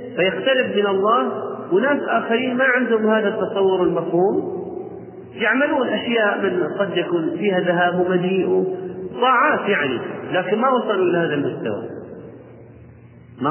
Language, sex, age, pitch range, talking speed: Arabic, male, 40-59, 145-200 Hz, 110 wpm